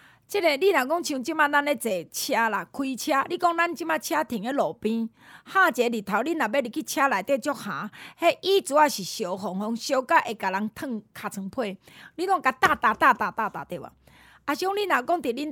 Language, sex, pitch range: Chinese, female, 220-310 Hz